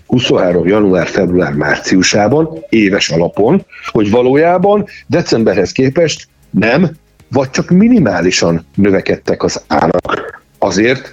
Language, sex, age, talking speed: Hungarian, male, 60-79, 85 wpm